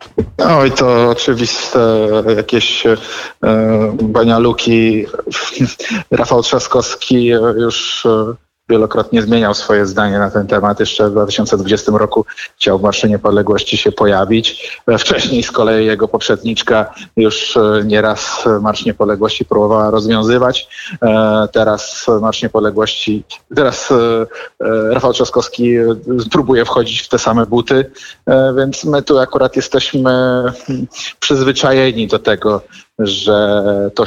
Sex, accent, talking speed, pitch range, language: male, native, 105 wpm, 110-125 Hz, Polish